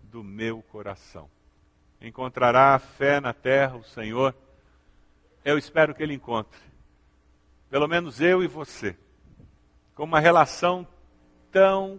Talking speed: 115 wpm